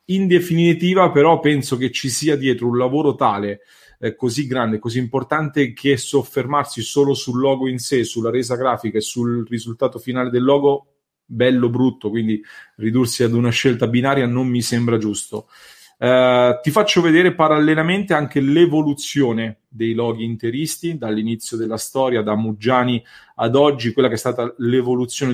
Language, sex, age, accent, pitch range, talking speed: English, male, 30-49, Italian, 115-140 Hz, 155 wpm